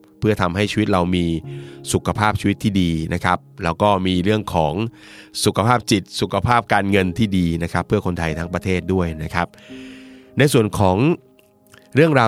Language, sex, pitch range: Thai, male, 85-105 Hz